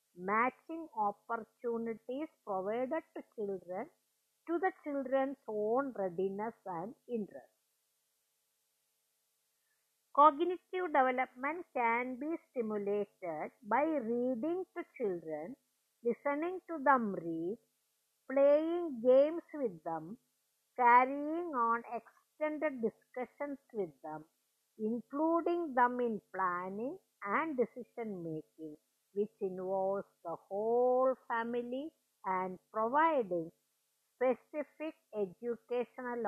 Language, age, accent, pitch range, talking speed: English, 50-69, Indian, 200-285 Hz, 85 wpm